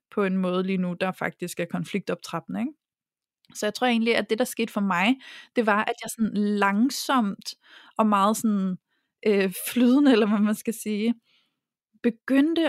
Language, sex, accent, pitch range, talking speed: Danish, female, native, 195-245 Hz, 170 wpm